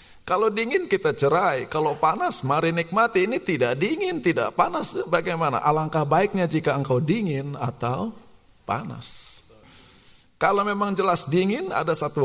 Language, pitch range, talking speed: Indonesian, 120-185 Hz, 130 wpm